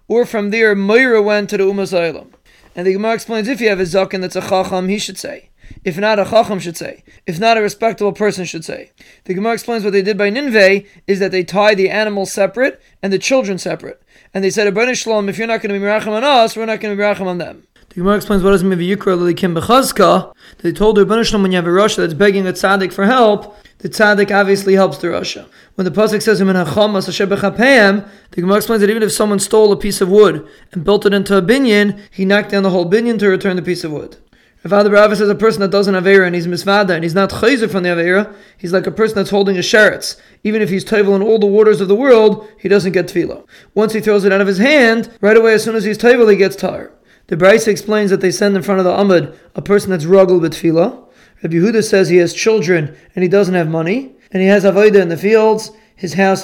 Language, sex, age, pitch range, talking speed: English, male, 20-39, 190-215 Hz, 255 wpm